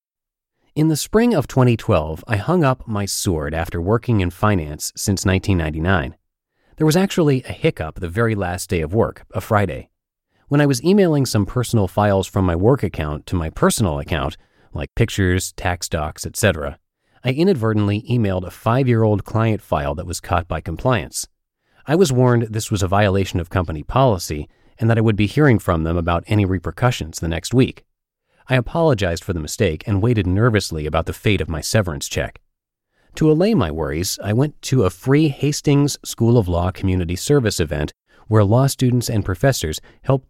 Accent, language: American, English